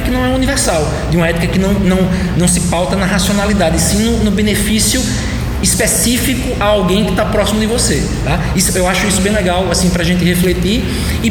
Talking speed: 220 wpm